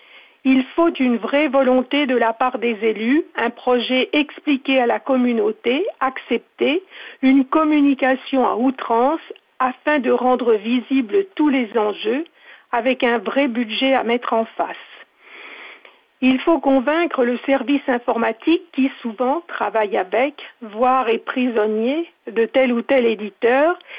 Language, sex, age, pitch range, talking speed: French, female, 50-69, 235-285 Hz, 135 wpm